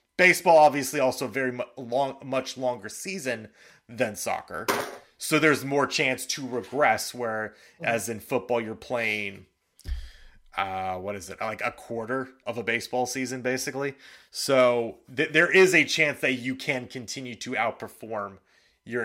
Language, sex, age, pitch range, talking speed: English, male, 30-49, 115-150 Hz, 150 wpm